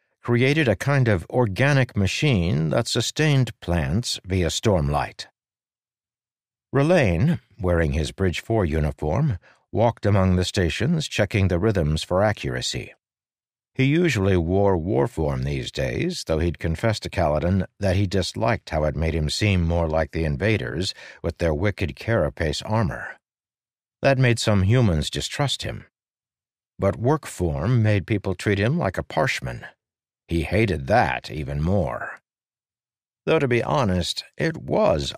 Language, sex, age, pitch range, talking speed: English, male, 60-79, 85-120 Hz, 140 wpm